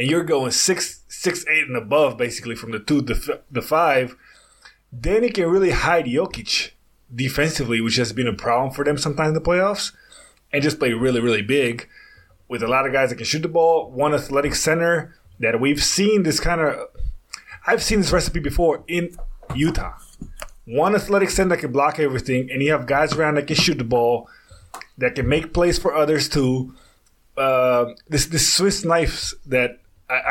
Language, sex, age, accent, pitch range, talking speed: English, male, 20-39, American, 125-165 Hz, 190 wpm